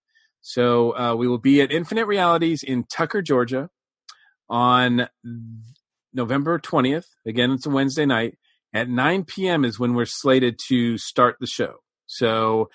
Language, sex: English, male